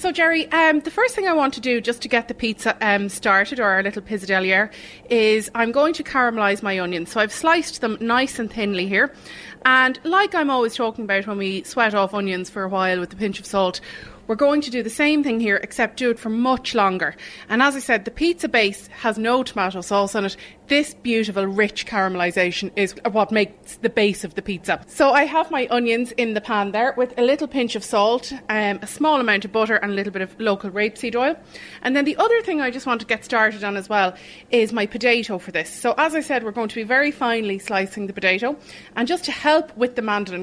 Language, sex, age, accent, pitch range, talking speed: English, female, 20-39, Irish, 200-255 Hz, 240 wpm